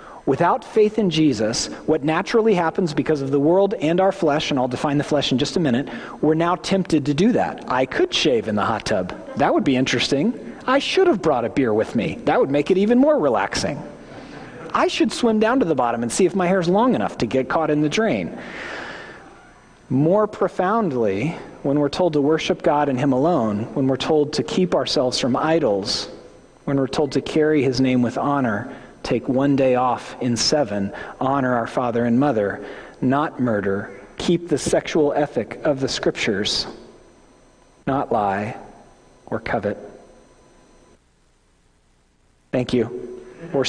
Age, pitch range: 40-59, 120-175 Hz